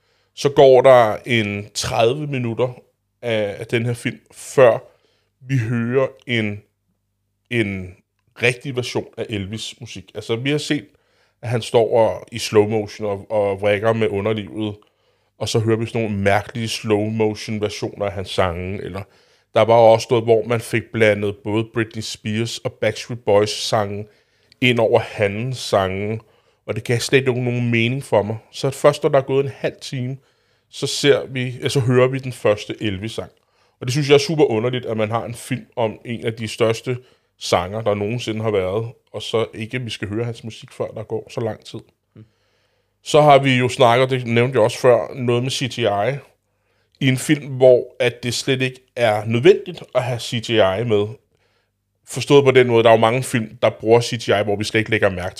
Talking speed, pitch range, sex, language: 195 wpm, 105-125 Hz, male, Danish